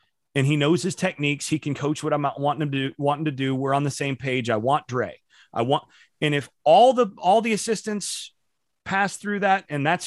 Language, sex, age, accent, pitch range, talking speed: English, male, 30-49, American, 135-175 Hz, 230 wpm